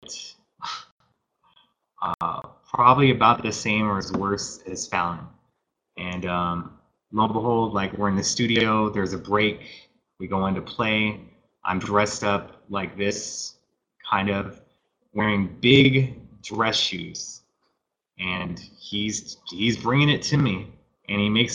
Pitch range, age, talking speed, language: 95-120 Hz, 20-39, 135 wpm, English